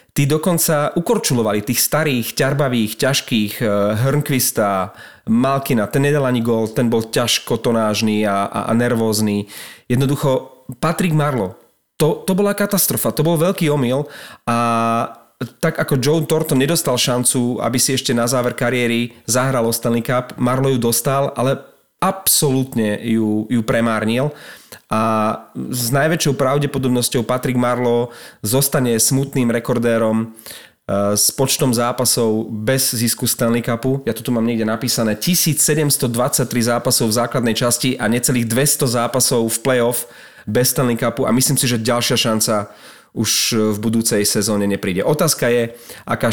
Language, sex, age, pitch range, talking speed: Slovak, male, 30-49, 115-135 Hz, 135 wpm